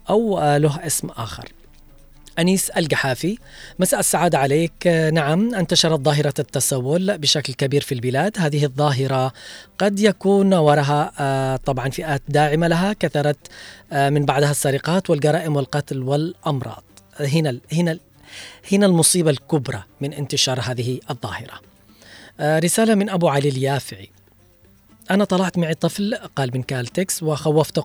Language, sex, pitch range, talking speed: Arabic, female, 135-165 Hz, 125 wpm